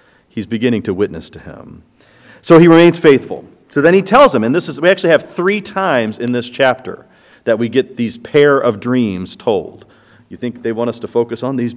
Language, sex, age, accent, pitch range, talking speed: English, male, 40-59, American, 120-165 Hz, 220 wpm